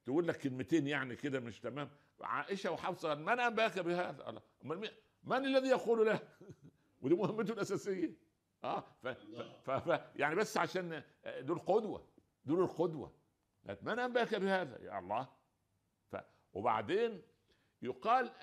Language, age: Arabic, 60-79